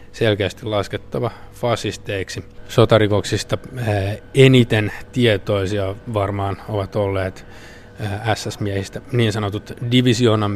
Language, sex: Finnish, male